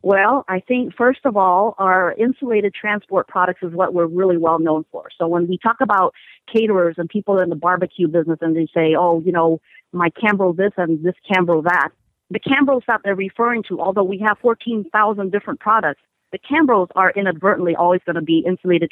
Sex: female